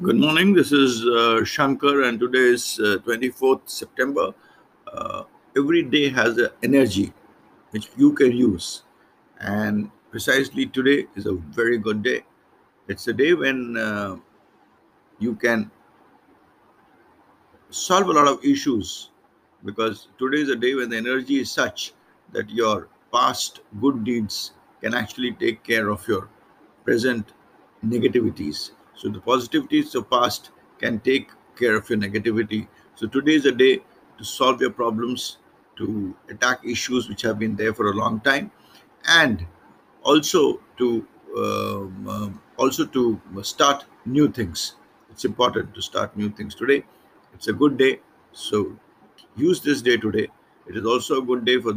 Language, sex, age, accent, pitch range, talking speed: English, male, 50-69, Indian, 110-140 Hz, 150 wpm